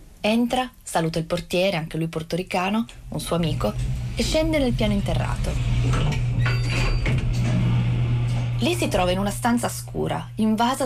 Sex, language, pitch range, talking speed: female, Italian, 130-205 Hz, 125 wpm